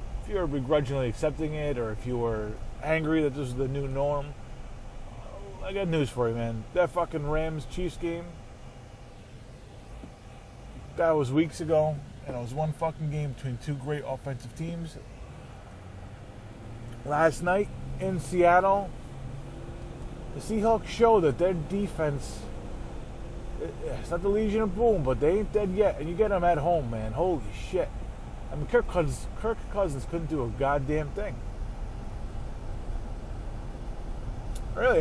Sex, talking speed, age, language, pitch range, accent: male, 140 wpm, 20-39, English, 115-170 Hz, American